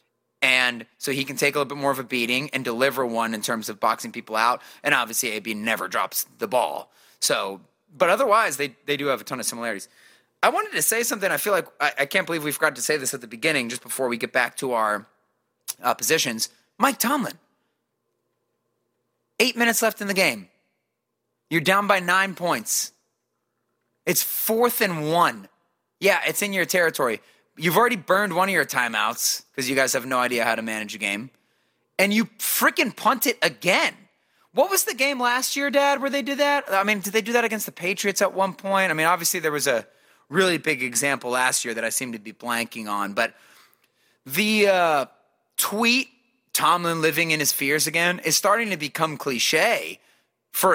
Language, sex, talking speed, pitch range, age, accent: English, male, 200 wpm, 125-200 Hz, 30-49, American